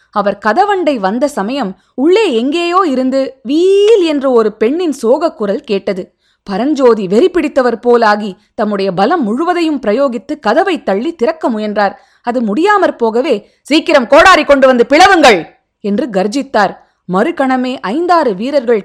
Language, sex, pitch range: Tamil, female, 210-305 Hz